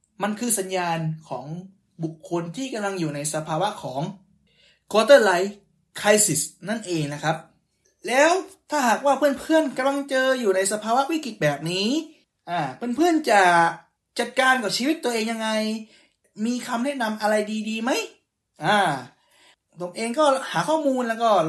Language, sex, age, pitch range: Thai, male, 20-39, 170-260 Hz